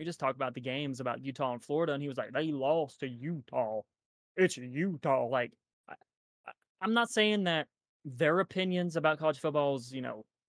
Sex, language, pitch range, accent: male, English, 145-195 Hz, American